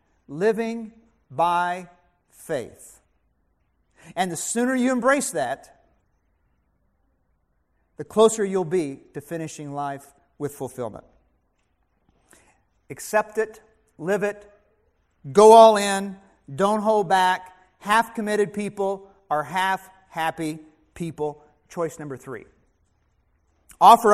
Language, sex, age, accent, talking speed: English, male, 40-59, American, 95 wpm